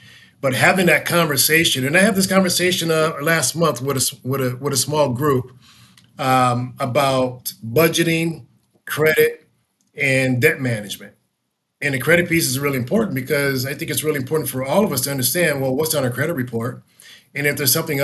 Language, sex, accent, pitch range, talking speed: English, male, American, 125-150 Hz, 185 wpm